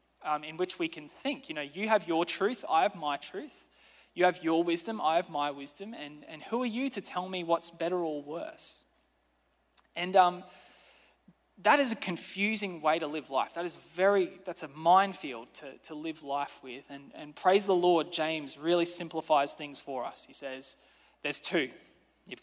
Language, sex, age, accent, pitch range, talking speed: English, male, 20-39, Australian, 155-195 Hz, 195 wpm